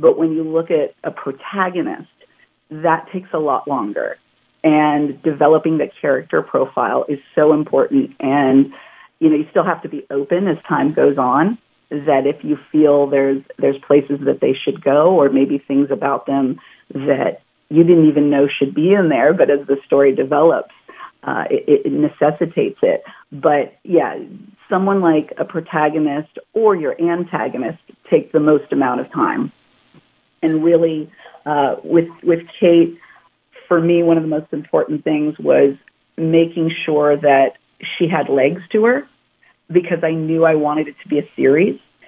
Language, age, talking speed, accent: English, 40-59, 165 wpm, American